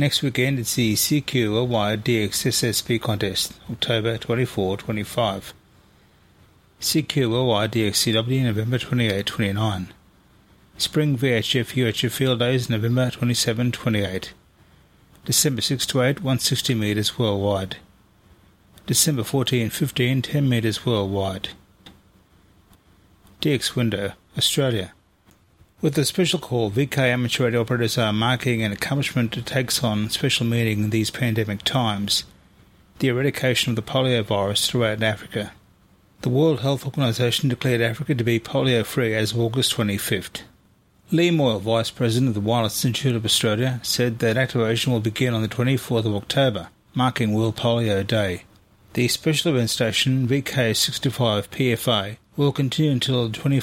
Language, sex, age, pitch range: English, male, 30-49, 105-130 Hz